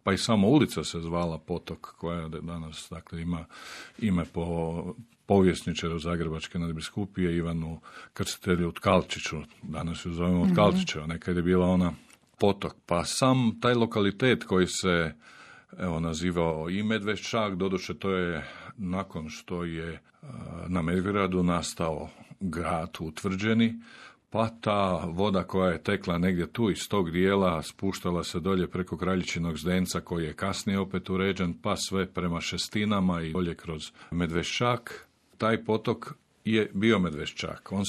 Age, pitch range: 50-69, 85-100 Hz